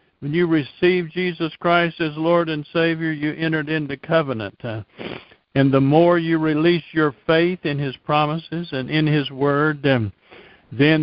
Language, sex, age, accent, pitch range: Japanese, male, 60-79, American, 140-165 Hz